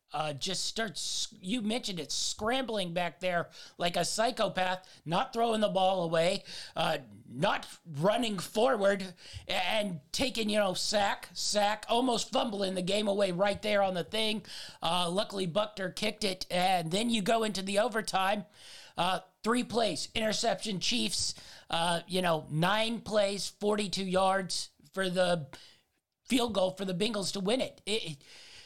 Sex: male